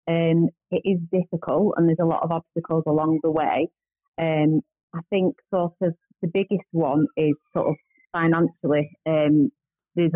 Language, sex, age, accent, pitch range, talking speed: English, female, 30-49, British, 150-170 Hz, 170 wpm